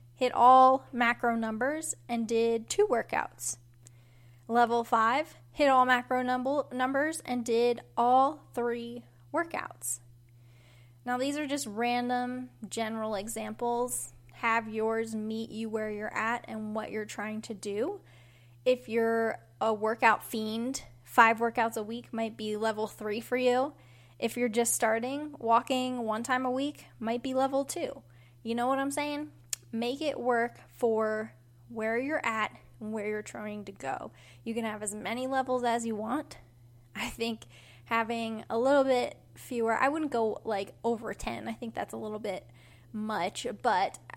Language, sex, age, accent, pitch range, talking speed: English, female, 10-29, American, 210-245 Hz, 155 wpm